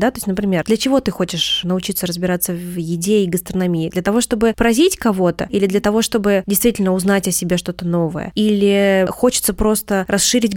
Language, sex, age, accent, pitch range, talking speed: Russian, female, 20-39, native, 185-230 Hz, 185 wpm